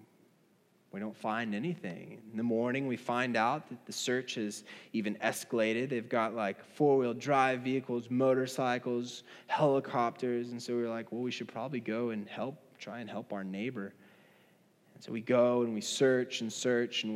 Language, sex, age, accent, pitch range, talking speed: English, male, 20-39, American, 110-130 Hz, 175 wpm